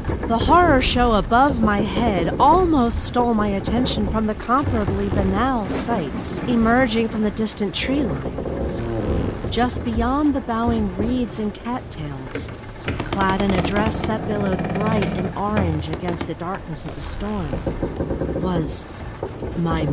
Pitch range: 185-250 Hz